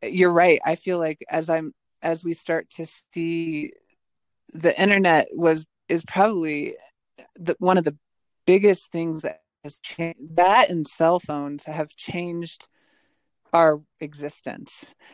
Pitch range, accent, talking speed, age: 155-180 Hz, American, 130 wpm, 20-39